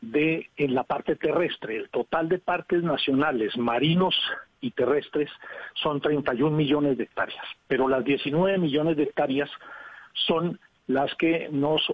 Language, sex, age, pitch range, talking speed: Spanish, male, 50-69, 140-170 Hz, 140 wpm